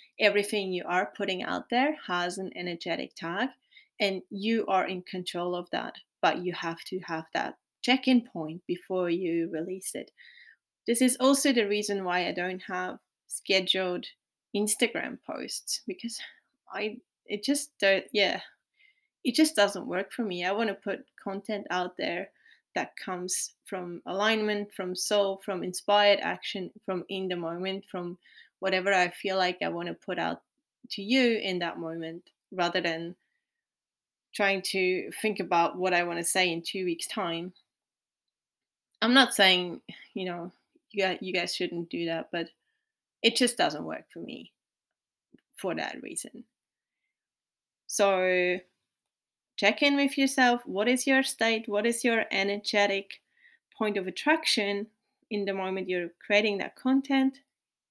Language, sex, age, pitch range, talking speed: English, female, 30-49, 180-235 Hz, 150 wpm